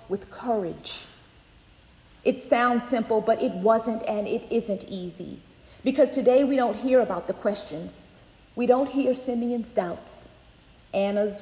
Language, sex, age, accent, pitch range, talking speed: English, female, 40-59, American, 215-265 Hz, 135 wpm